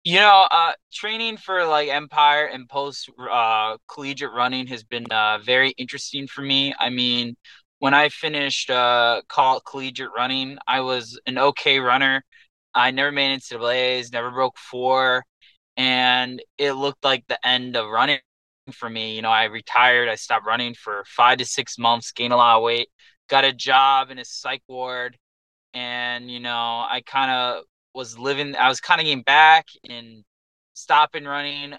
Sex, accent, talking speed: male, American, 170 wpm